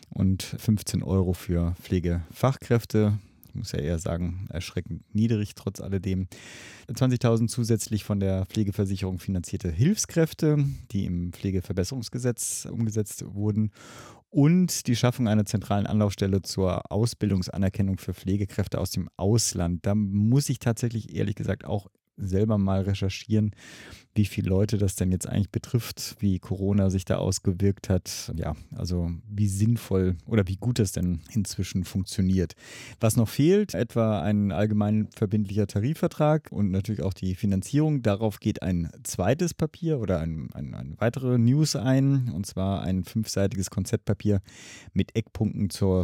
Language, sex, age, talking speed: German, male, 30-49, 140 wpm